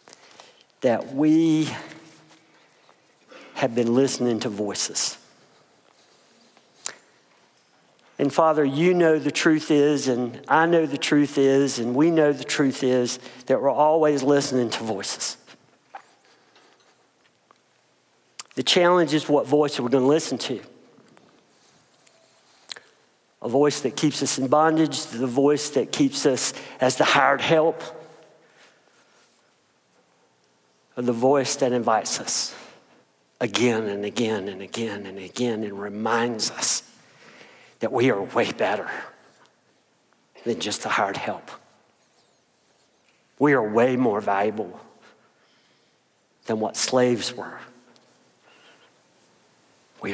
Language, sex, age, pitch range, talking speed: English, male, 50-69, 115-155 Hz, 110 wpm